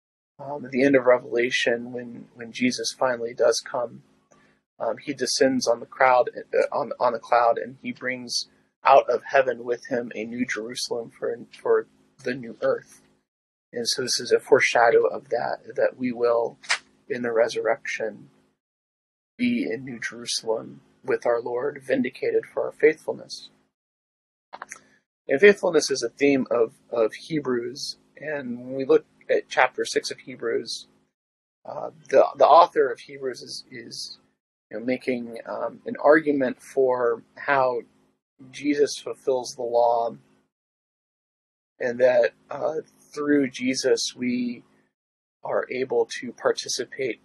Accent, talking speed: American, 135 wpm